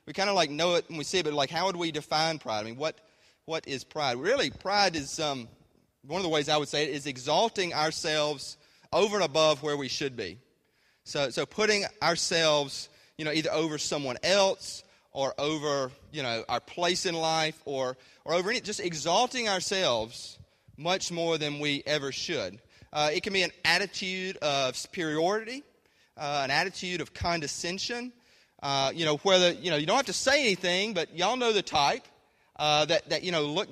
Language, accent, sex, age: English, American, male, 30-49